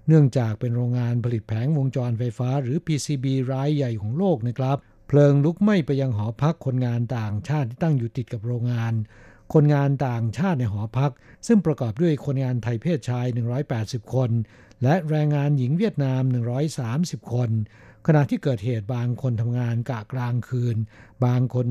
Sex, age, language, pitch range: male, 60-79, Thai, 120-145 Hz